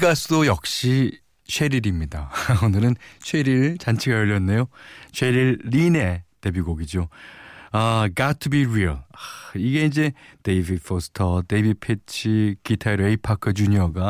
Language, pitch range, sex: Korean, 90-140 Hz, male